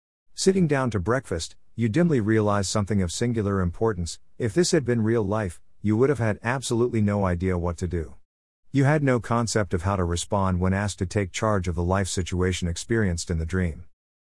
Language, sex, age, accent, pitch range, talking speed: English, male, 50-69, American, 85-115 Hz, 205 wpm